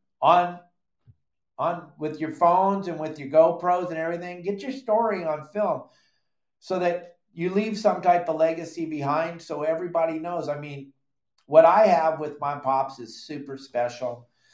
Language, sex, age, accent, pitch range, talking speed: English, male, 50-69, American, 120-150 Hz, 160 wpm